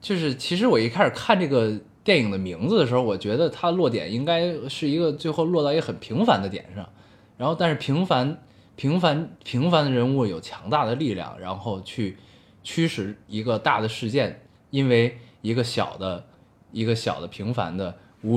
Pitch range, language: 105-145 Hz, Chinese